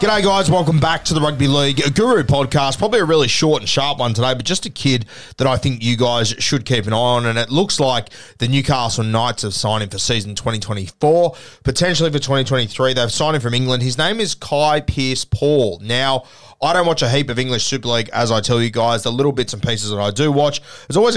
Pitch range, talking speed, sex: 115-140 Hz, 240 wpm, male